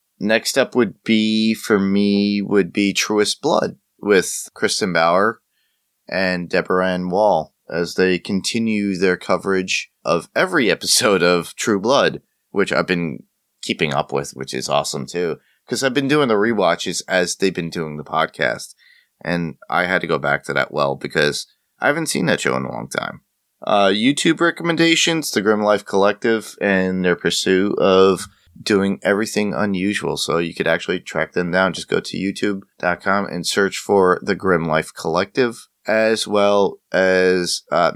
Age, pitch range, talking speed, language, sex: 30-49, 85-105 Hz, 165 wpm, English, male